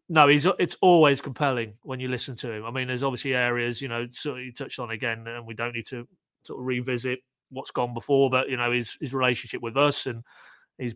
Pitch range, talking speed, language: 120-135 Hz, 235 wpm, English